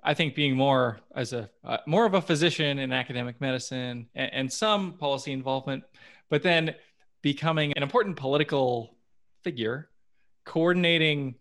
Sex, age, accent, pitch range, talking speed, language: male, 20-39, American, 125-150 Hz, 140 wpm, English